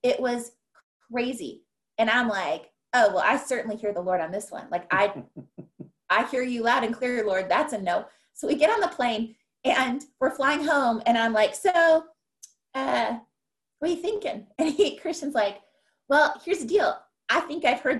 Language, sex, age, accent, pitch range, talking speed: English, female, 20-39, American, 210-265 Hz, 195 wpm